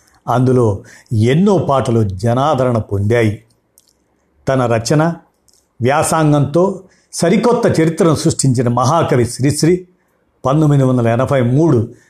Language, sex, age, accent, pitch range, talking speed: Telugu, male, 50-69, native, 120-155 Hz, 85 wpm